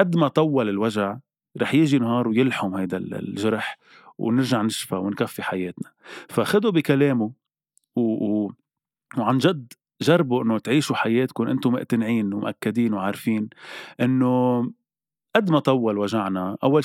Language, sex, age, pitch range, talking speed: Arabic, male, 30-49, 105-140 Hz, 120 wpm